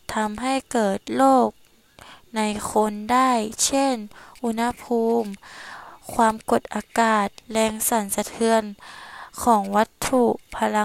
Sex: female